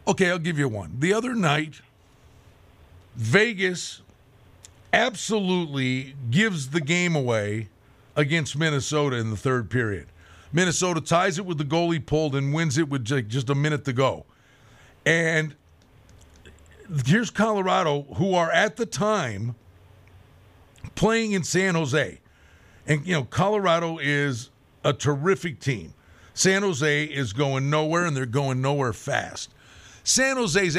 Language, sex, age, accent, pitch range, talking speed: English, male, 50-69, American, 130-190 Hz, 135 wpm